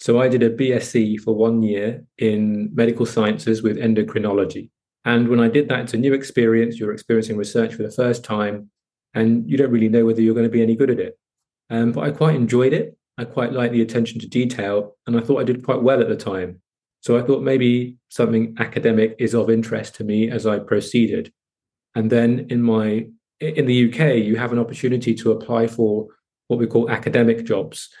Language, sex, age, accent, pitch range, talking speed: English, male, 30-49, British, 110-120 Hz, 210 wpm